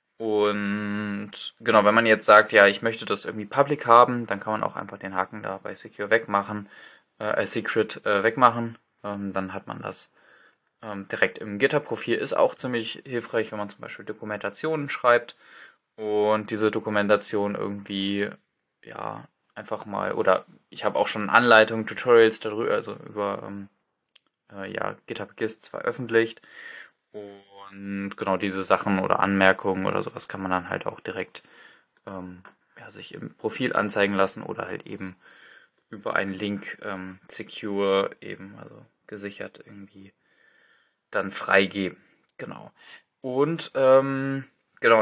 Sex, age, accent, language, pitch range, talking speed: male, 20-39, German, German, 100-115 Hz, 145 wpm